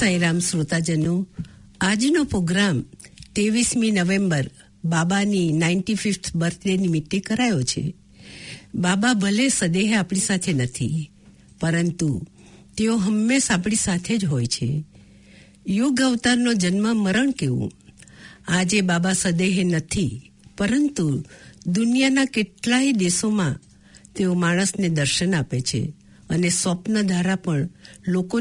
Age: 60-79